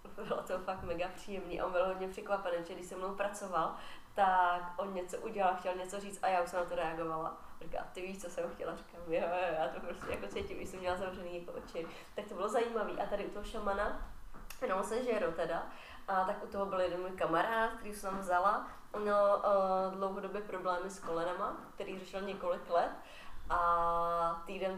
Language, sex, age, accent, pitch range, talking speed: Czech, female, 20-39, native, 175-200 Hz, 205 wpm